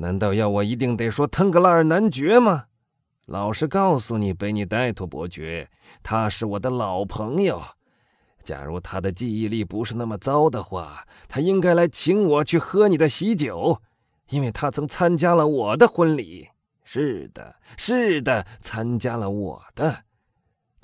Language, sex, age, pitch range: Chinese, male, 30-49, 110-170 Hz